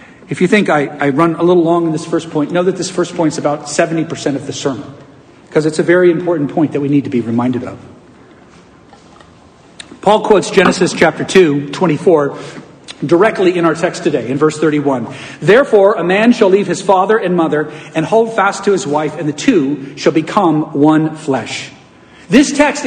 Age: 40-59